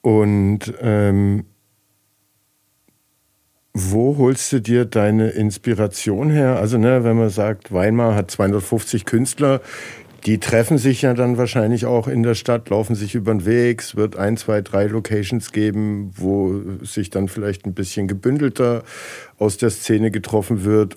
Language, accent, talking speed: German, German, 145 wpm